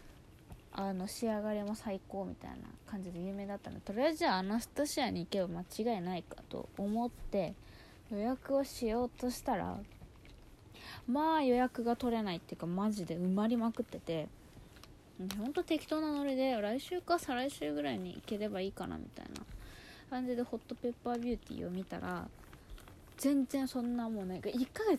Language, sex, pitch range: Japanese, female, 185-255 Hz